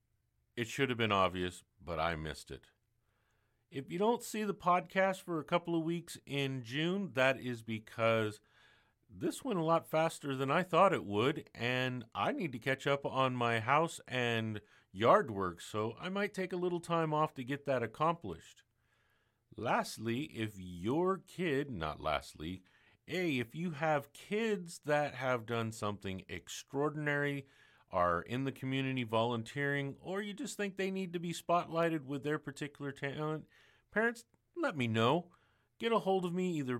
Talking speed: 170 wpm